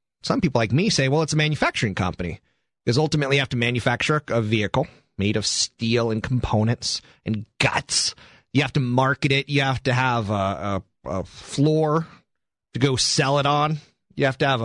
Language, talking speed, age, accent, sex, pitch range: English, 195 wpm, 30-49, American, male, 115-155 Hz